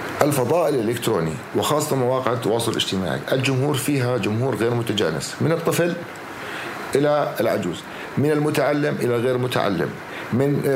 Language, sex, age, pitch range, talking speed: Arabic, male, 50-69, 125-155 Hz, 115 wpm